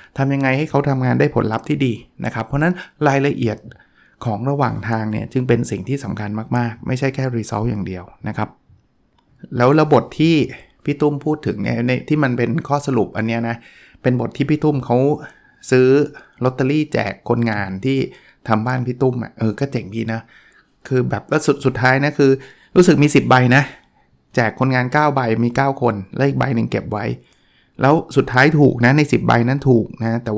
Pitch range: 115-140 Hz